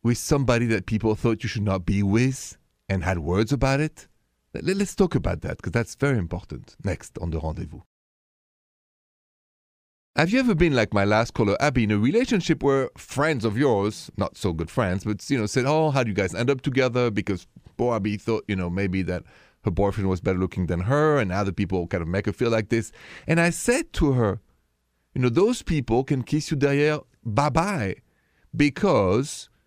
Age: 40-59